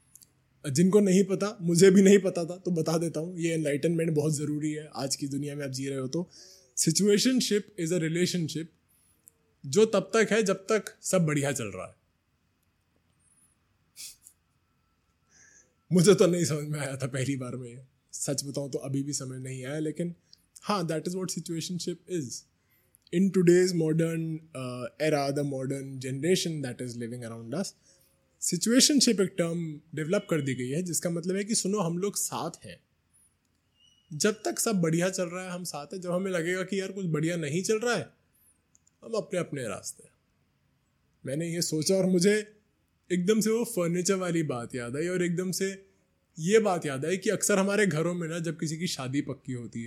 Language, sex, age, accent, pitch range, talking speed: Hindi, male, 20-39, native, 135-185 Hz, 185 wpm